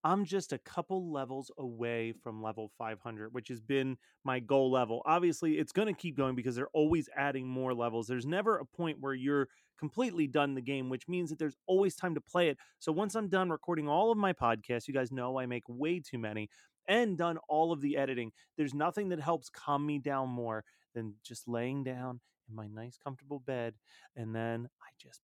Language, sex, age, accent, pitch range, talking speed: English, male, 30-49, American, 125-175 Hz, 215 wpm